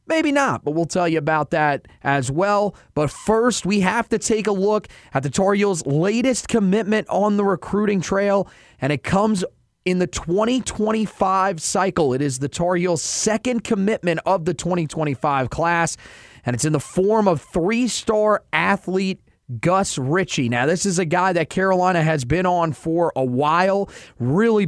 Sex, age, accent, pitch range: male, 30-49, American, 150-190 Hz